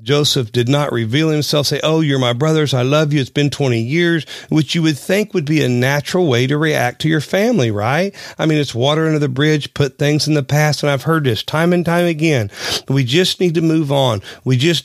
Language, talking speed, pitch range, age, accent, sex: English, 245 wpm, 120-150 Hz, 40-59, American, male